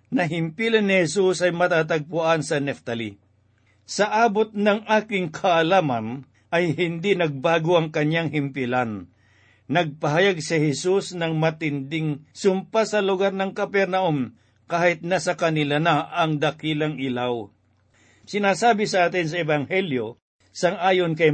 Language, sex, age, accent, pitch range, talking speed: Filipino, male, 50-69, native, 145-190 Hz, 125 wpm